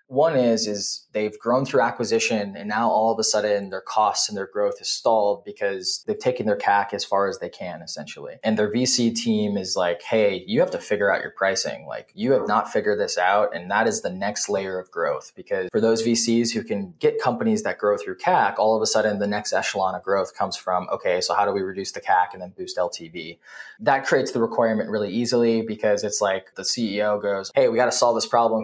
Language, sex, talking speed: English, male, 240 wpm